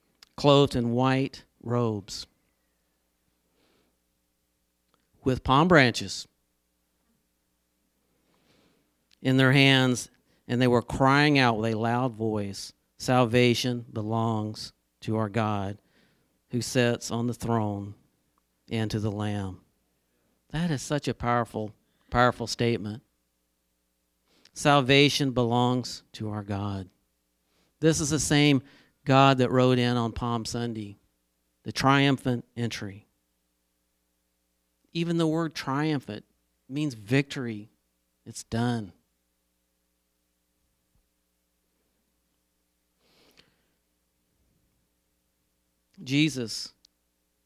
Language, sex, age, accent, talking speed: English, male, 50-69, American, 85 wpm